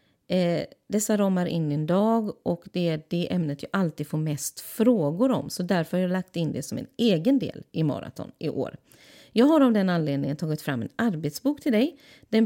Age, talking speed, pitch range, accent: 30-49, 210 wpm, 160-230 Hz, Swedish